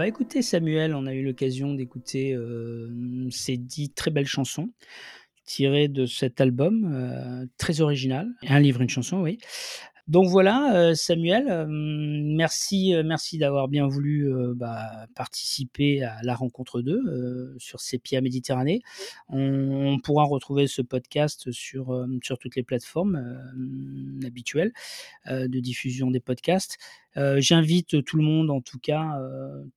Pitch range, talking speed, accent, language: 130-165 Hz, 155 wpm, French, French